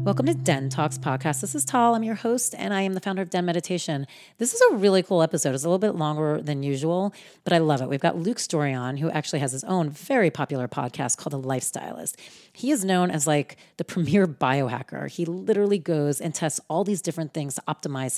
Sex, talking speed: female, 235 wpm